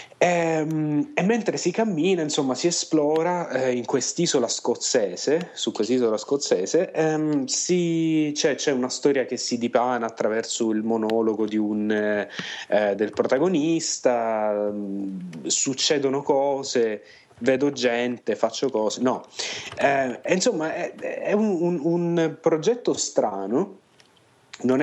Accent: native